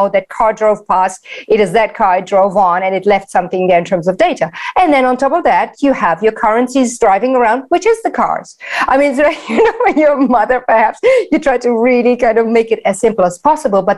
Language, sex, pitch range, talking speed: English, female, 190-255 Hz, 250 wpm